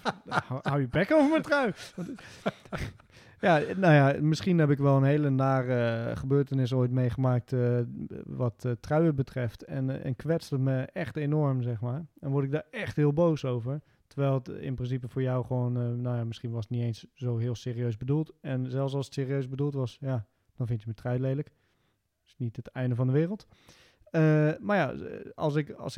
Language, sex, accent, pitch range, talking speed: Dutch, male, Dutch, 120-150 Hz, 190 wpm